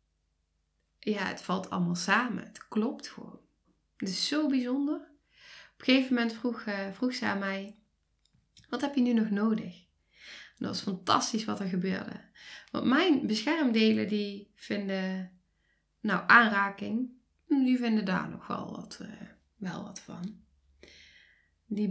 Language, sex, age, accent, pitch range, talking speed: Dutch, female, 10-29, Dutch, 195-255 Hz, 135 wpm